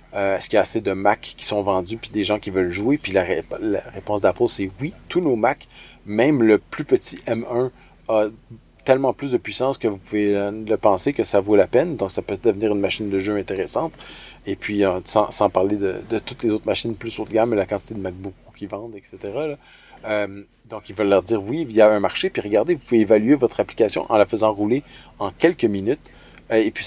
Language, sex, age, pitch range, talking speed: French, male, 30-49, 100-115 Hz, 245 wpm